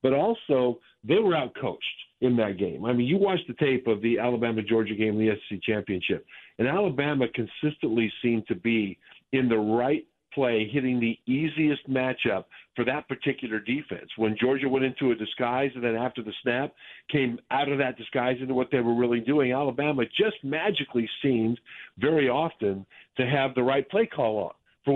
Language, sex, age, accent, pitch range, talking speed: English, male, 50-69, American, 115-135 Hz, 185 wpm